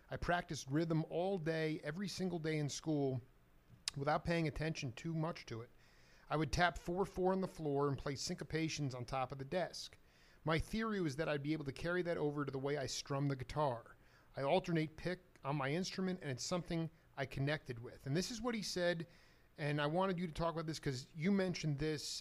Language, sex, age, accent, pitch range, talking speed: English, male, 40-59, American, 135-175 Hz, 215 wpm